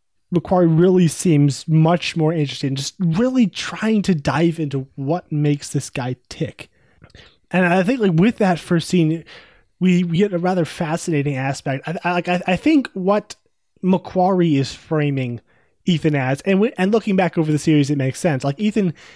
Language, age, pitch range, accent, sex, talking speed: English, 20-39, 145-175 Hz, American, male, 170 wpm